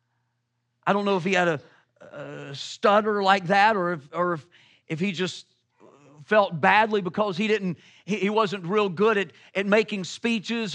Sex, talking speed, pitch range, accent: male, 175 wpm, 155-225 Hz, American